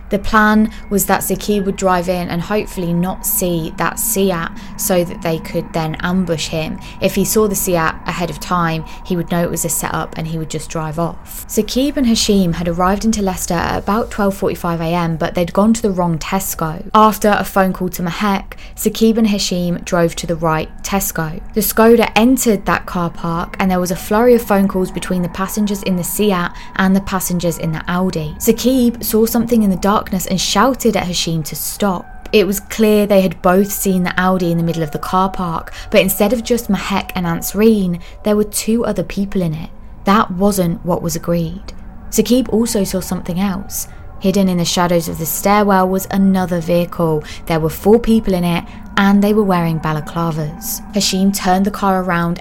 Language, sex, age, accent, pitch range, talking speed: English, female, 20-39, British, 170-205 Hz, 205 wpm